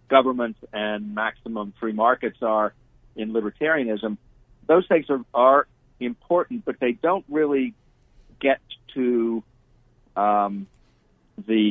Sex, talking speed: male, 110 wpm